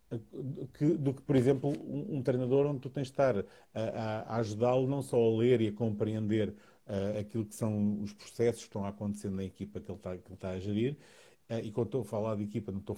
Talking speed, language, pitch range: 250 wpm, English, 105-135 Hz